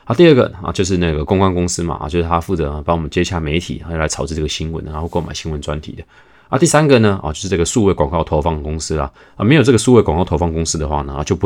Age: 20-39